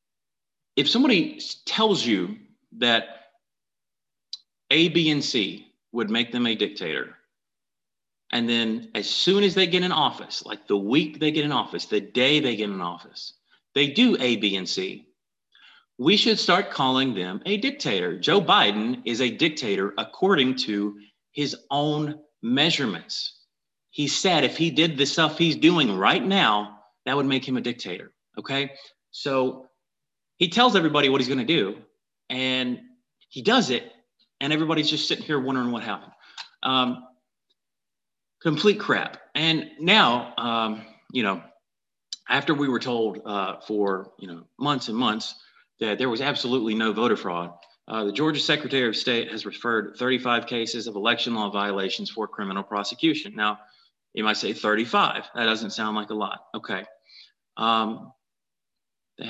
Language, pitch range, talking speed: English, 110-155 Hz, 155 wpm